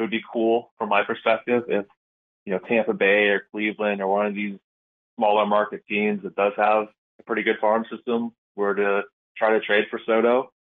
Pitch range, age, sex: 105-120 Hz, 20-39, male